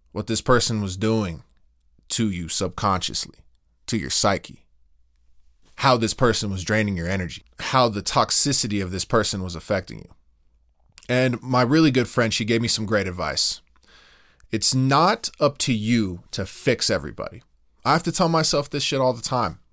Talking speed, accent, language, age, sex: 170 wpm, American, English, 20-39, male